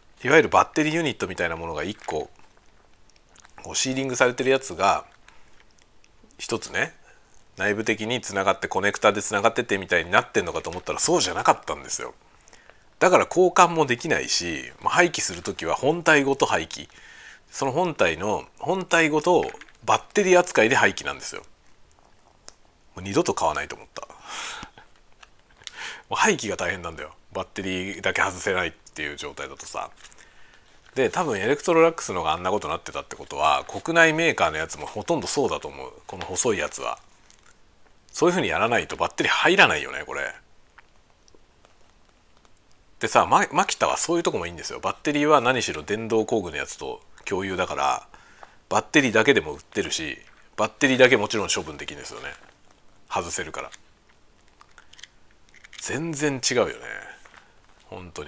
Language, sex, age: Japanese, male, 40-59